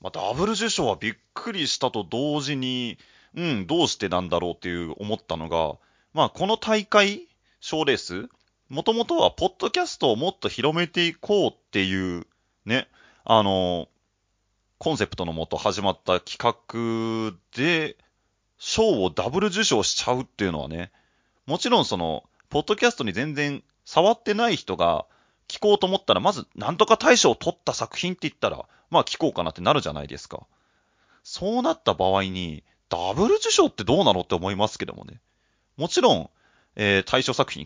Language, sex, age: Japanese, male, 30-49